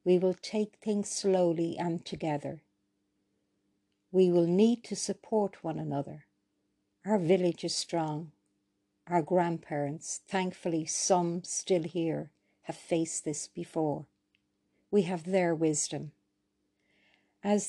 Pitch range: 135-185 Hz